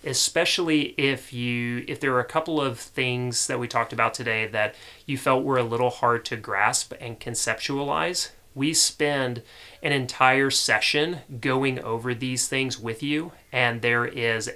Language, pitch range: English, 120-145 Hz